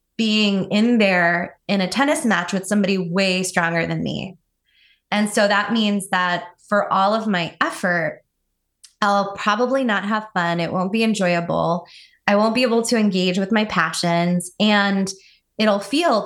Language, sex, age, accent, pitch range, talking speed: English, female, 20-39, American, 185-225 Hz, 160 wpm